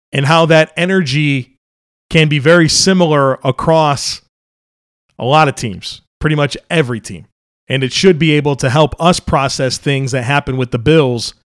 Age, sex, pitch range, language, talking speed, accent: 40-59, male, 130-160 Hz, English, 165 wpm, American